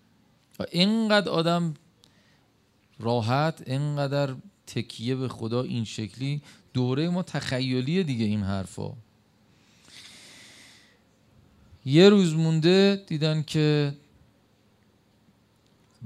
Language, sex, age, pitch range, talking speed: Persian, male, 40-59, 105-130 Hz, 75 wpm